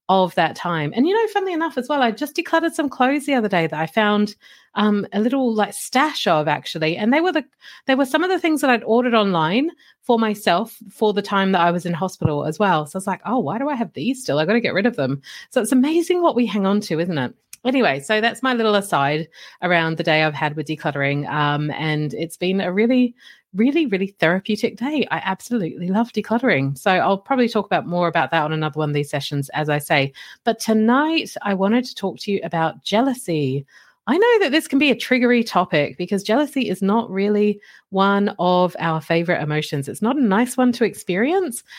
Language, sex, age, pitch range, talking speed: English, female, 30-49, 175-260 Hz, 230 wpm